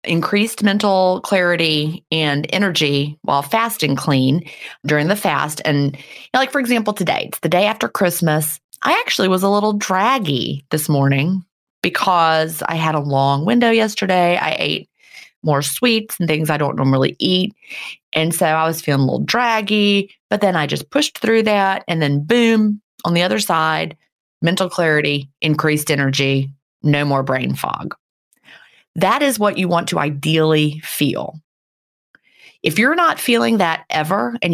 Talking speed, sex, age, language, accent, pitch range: 160 wpm, female, 30-49, English, American, 150-205 Hz